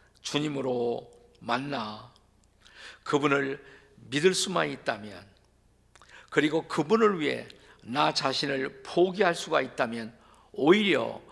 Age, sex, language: 50-69, male, Korean